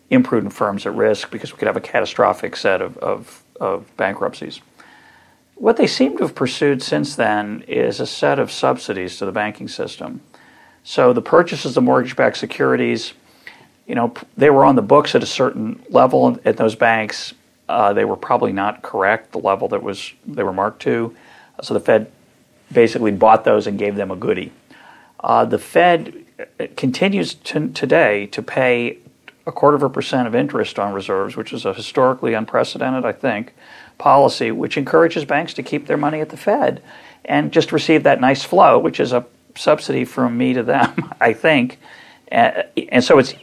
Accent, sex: American, male